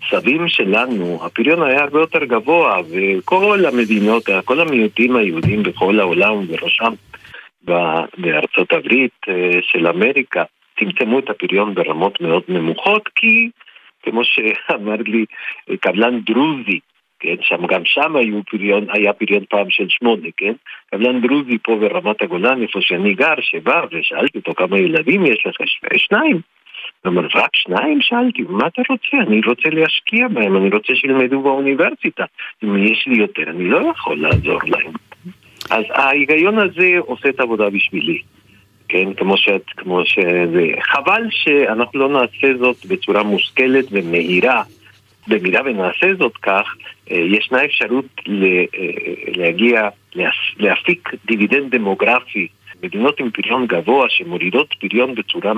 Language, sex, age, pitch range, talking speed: Hebrew, male, 50-69, 100-145 Hz, 125 wpm